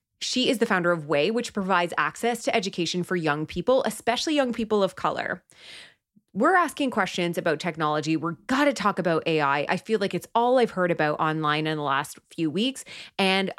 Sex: female